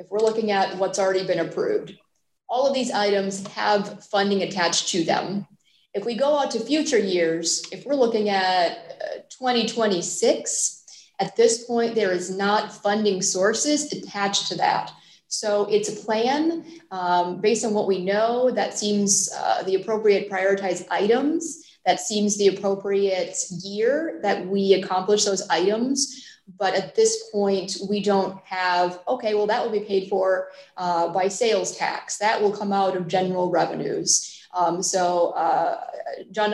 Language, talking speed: English, 160 wpm